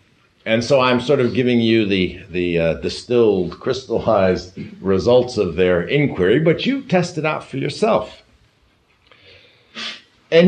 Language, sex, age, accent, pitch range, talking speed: English, male, 60-79, American, 100-145 Hz, 135 wpm